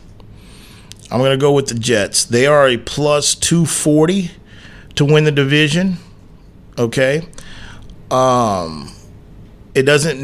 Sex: male